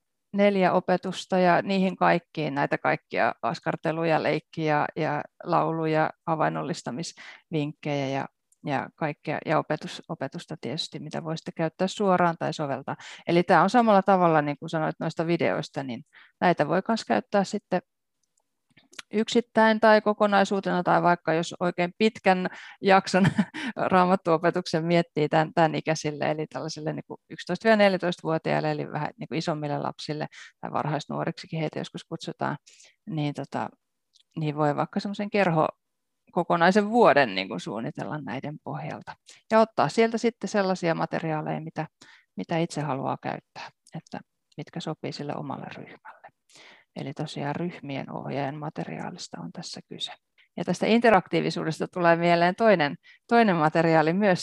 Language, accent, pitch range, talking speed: Finnish, native, 160-200 Hz, 120 wpm